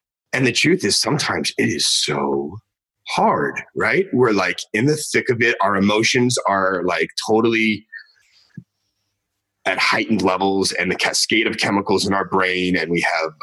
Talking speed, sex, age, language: 160 wpm, male, 30-49, English